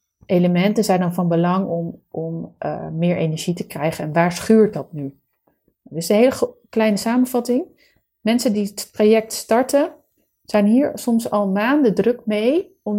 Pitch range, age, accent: 170-215 Hz, 30-49, Dutch